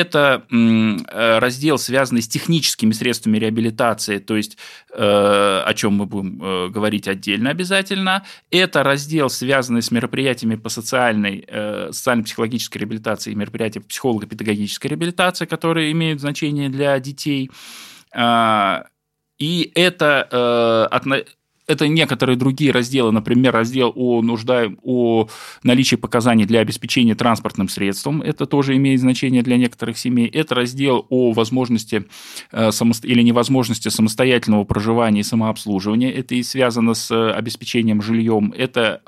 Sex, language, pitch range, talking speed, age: male, Russian, 110-140 Hz, 115 wpm, 20-39